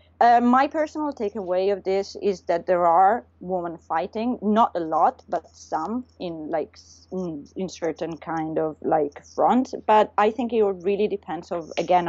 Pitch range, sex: 160-195 Hz, female